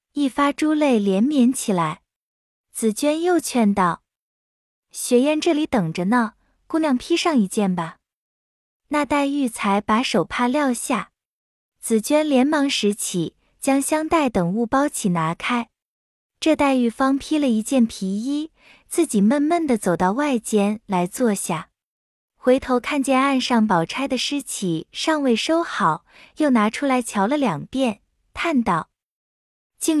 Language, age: Chinese, 20-39